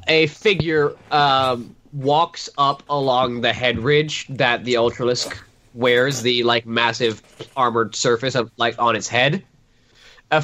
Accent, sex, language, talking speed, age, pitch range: American, male, English, 140 wpm, 20-39, 115-140 Hz